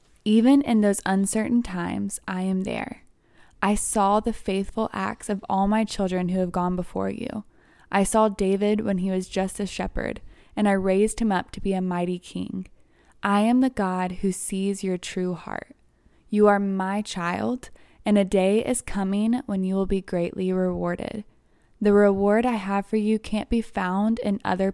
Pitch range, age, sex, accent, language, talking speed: 185-215 Hz, 10-29, female, American, English, 185 wpm